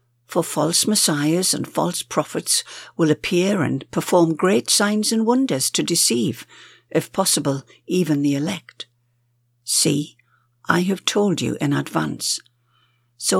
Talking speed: 130 wpm